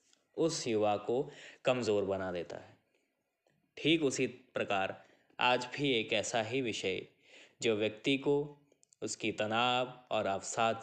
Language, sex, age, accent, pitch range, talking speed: Hindi, male, 20-39, native, 110-145 Hz, 125 wpm